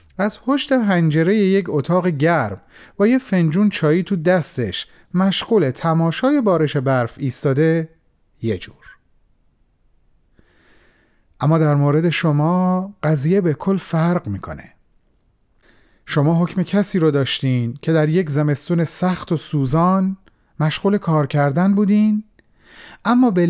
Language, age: Persian, 40-59